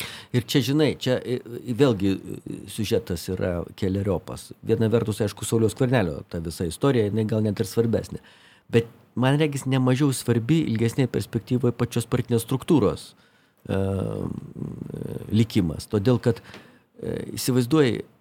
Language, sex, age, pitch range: English, male, 50-69, 105-145 Hz